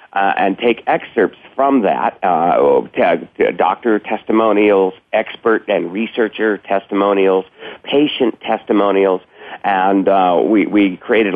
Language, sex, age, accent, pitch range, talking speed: English, male, 50-69, American, 95-115 Hz, 105 wpm